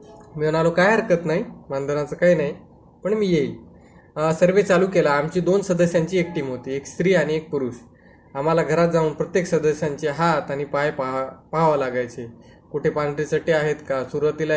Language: Marathi